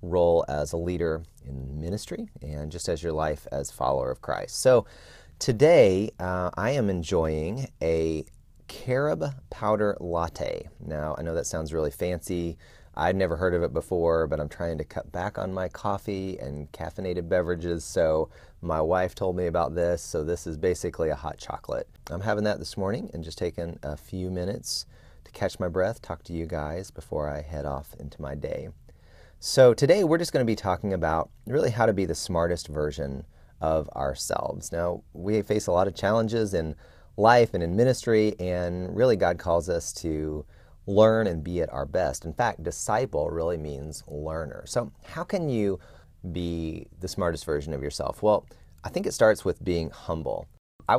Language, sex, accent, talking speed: English, male, American, 185 wpm